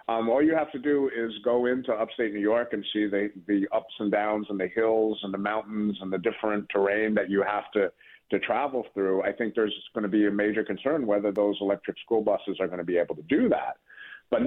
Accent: American